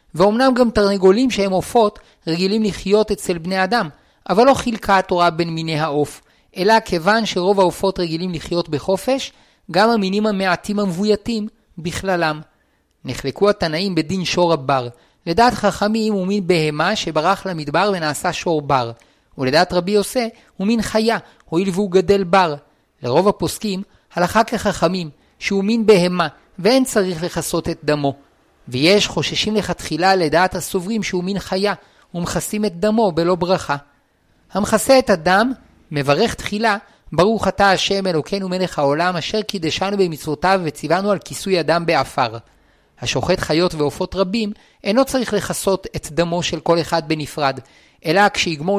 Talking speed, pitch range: 140 wpm, 165-205 Hz